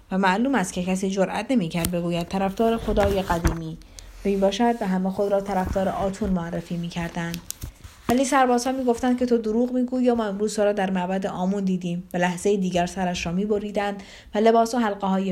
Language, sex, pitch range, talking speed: Persian, female, 180-225 Hz, 175 wpm